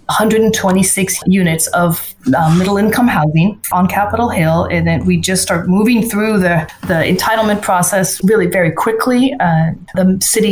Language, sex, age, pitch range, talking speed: English, female, 30-49, 175-210 Hz, 150 wpm